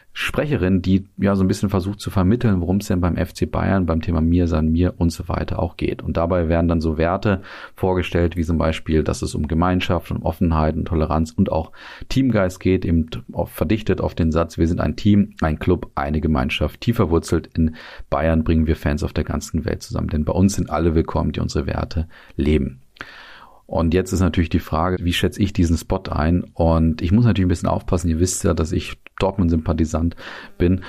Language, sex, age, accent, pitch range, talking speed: German, male, 40-59, German, 80-95 Hz, 210 wpm